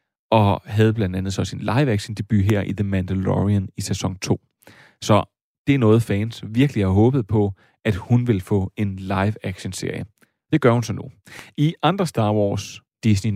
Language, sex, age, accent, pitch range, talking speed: Danish, male, 30-49, native, 100-120 Hz, 175 wpm